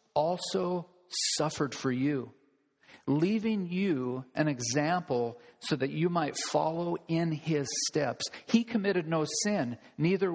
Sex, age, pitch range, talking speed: male, 50-69, 140-175 Hz, 120 wpm